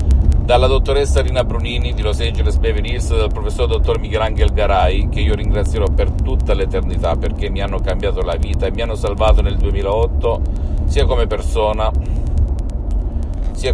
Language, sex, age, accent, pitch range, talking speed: Italian, male, 50-69, native, 70-85 Hz, 155 wpm